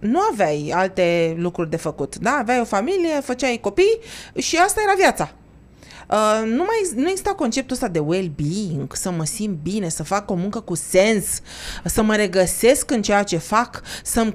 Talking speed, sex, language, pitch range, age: 165 wpm, female, Romanian, 175-250 Hz, 30-49